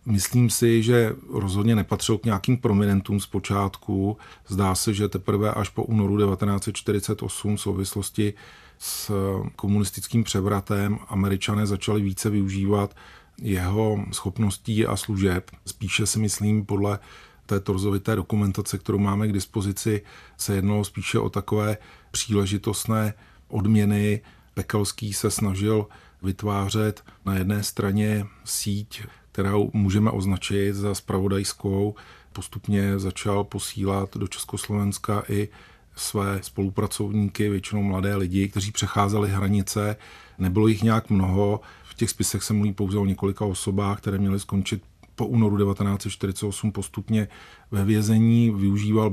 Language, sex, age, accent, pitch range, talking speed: Czech, male, 40-59, native, 100-105 Hz, 120 wpm